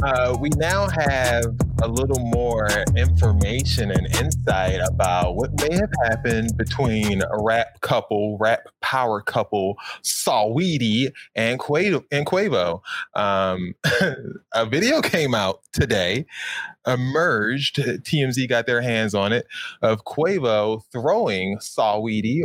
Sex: male